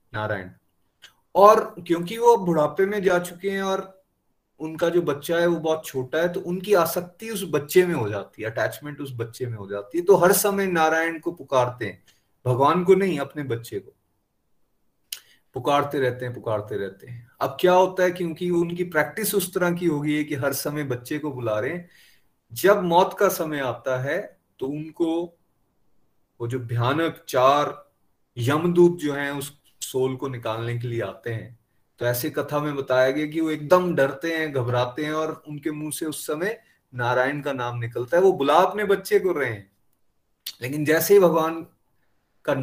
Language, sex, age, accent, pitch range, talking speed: Hindi, male, 30-49, native, 125-175 Hz, 180 wpm